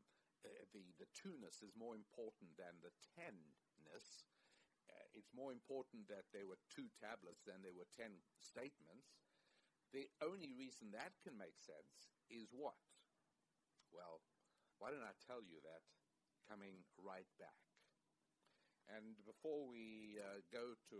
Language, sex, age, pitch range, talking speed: English, male, 60-79, 95-130 Hz, 140 wpm